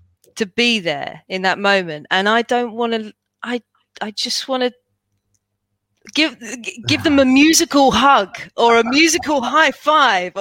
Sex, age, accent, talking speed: female, 30-49, British, 155 wpm